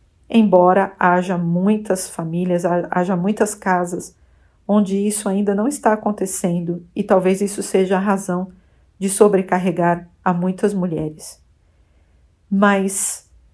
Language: Portuguese